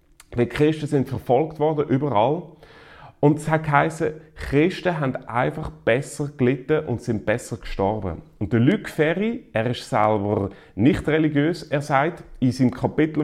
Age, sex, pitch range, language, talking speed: 30-49, male, 115-150 Hz, German, 140 wpm